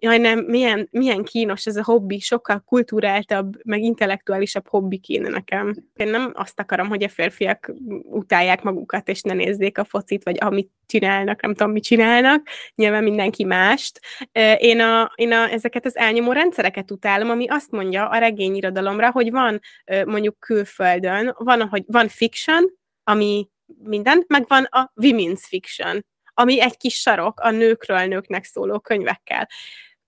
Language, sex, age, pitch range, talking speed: Hungarian, female, 20-39, 195-235 Hz, 155 wpm